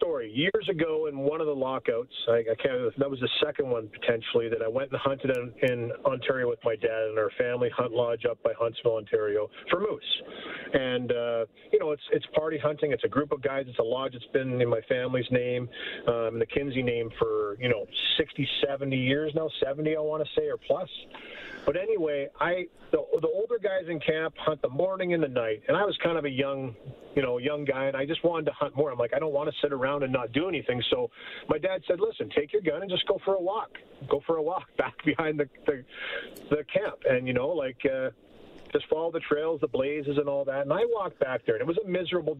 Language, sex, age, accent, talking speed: English, male, 40-59, American, 245 wpm